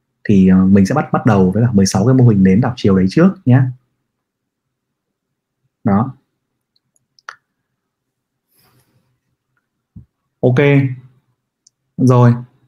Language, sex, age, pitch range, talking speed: Vietnamese, male, 20-39, 110-130 Hz, 95 wpm